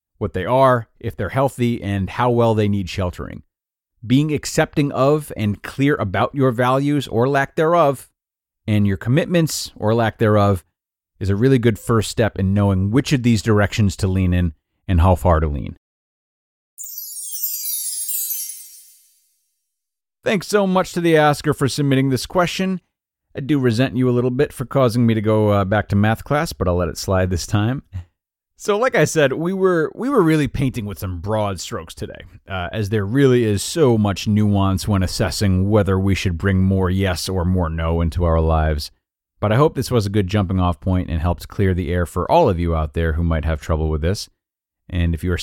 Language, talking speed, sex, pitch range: English, 195 wpm, male, 90-125 Hz